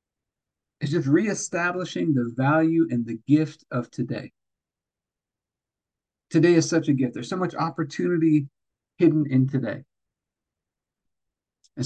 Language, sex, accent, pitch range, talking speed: English, male, American, 115-135 Hz, 115 wpm